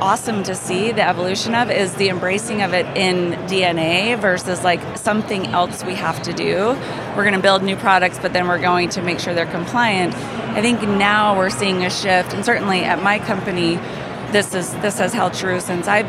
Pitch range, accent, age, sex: 180-210 Hz, American, 30-49, female